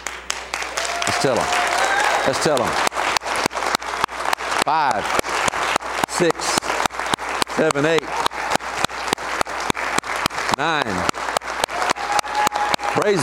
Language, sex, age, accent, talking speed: English, male, 60-79, American, 50 wpm